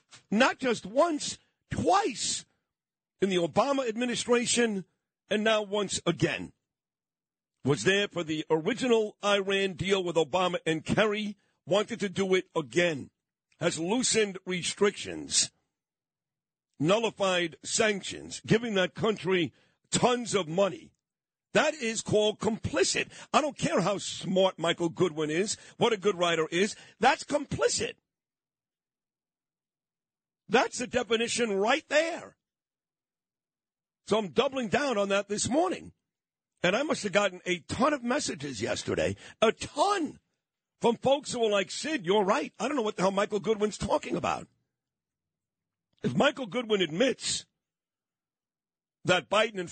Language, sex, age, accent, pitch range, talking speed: English, male, 50-69, American, 175-235 Hz, 130 wpm